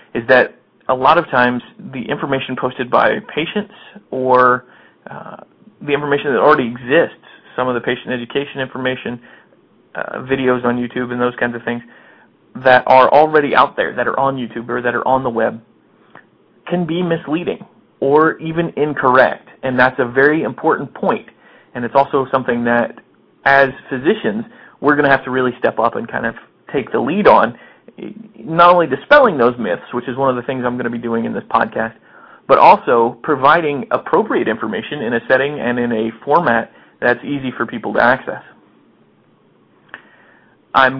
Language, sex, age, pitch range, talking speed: English, male, 30-49, 120-140 Hz, 175 wpm